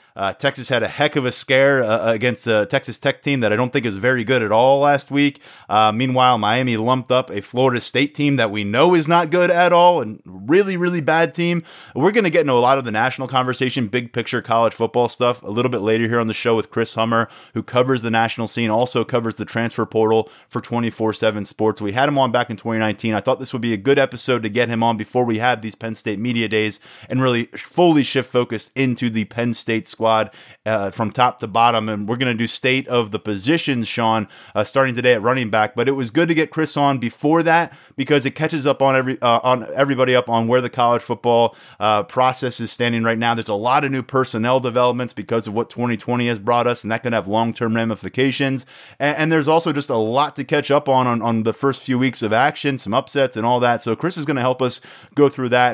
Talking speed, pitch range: 250 wpm, 115-135 Hz